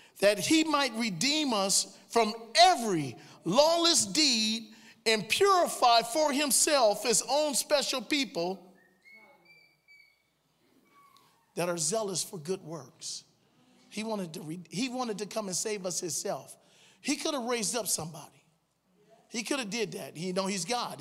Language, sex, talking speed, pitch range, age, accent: English, male, 135 wpm, 195-260 Hz, 40-59, American